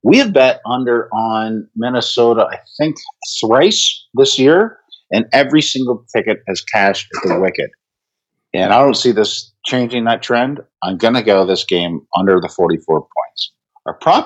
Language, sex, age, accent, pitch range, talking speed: English, male, 50-69, American, 100-150 Hz, 170 wpm